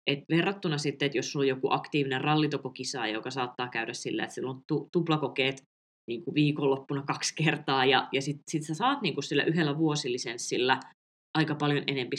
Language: Finnish